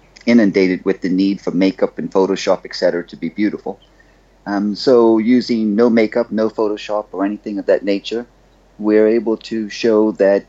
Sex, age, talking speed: male, 30-49, 165 wpm